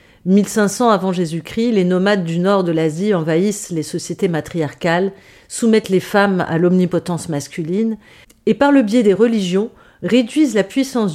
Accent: French